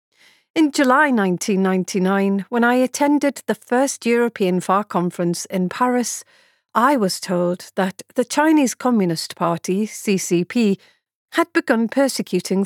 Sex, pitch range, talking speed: female, 180-245 Hz, 120 wpm